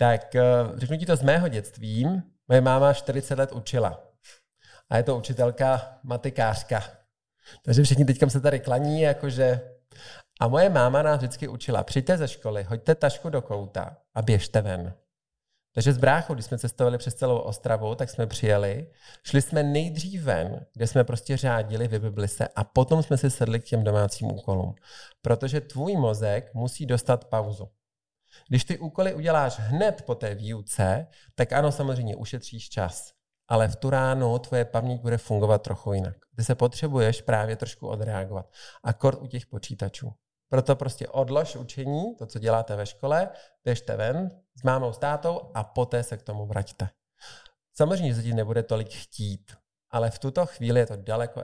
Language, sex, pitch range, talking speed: Czech, male, 110-140 Hz, 170 wpm